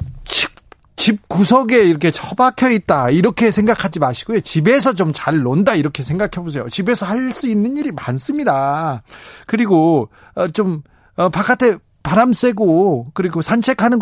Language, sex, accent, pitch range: Korean, male, native, 145-195 Hz